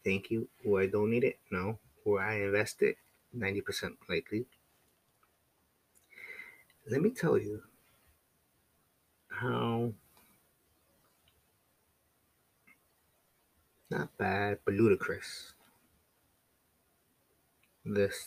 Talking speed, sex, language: 80 wpm, male, English